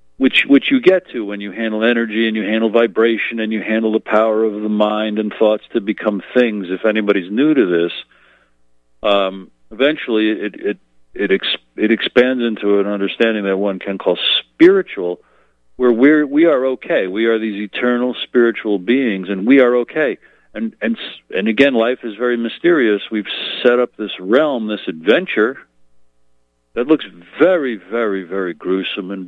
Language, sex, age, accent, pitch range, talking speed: English, male, 50-69, American, 75-115 Hz, 175 wpm